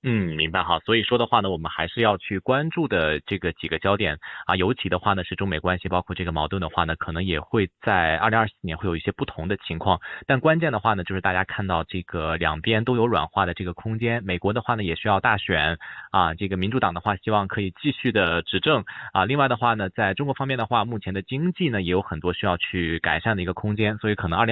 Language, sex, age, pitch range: Chinese, male, 20-39, 90-115 Hz